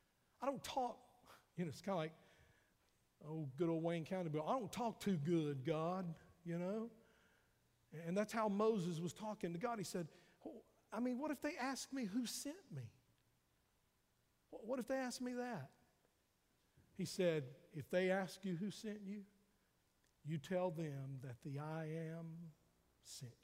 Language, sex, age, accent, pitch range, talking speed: English, male, 50-69, American, 150-210 Hz, 170 wpm